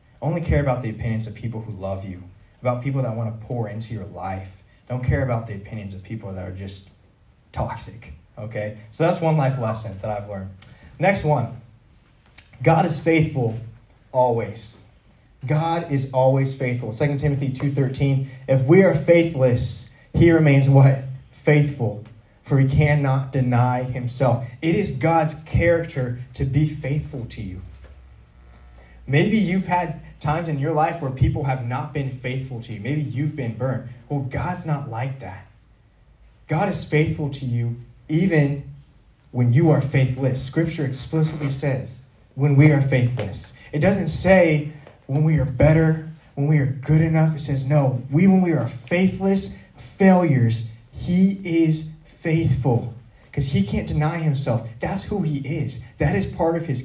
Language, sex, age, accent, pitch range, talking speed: English, male, 20-39, American, 115-150 Hz, 160 wpm